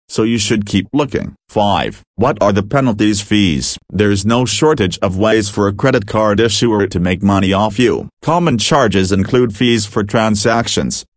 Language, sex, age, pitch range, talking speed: English, male, 40-59, 100-115 Hz, 170 wpm